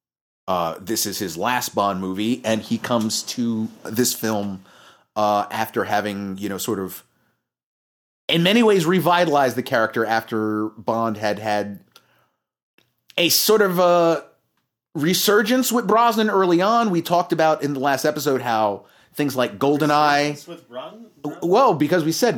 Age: 30-49